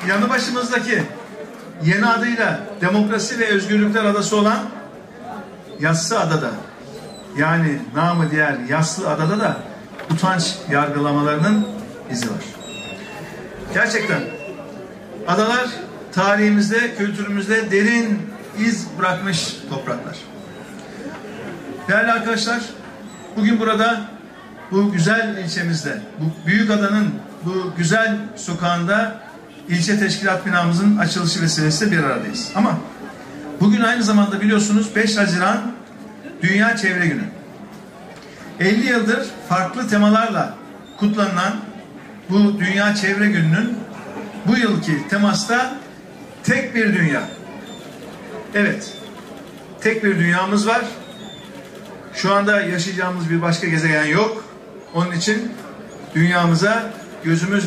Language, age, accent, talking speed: Turkish, 50-69, native, 95 wpm